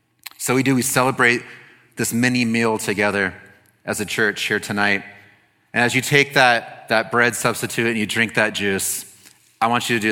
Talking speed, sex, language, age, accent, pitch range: 190 wpm, male, English, 30-49, American, 105-125 Hz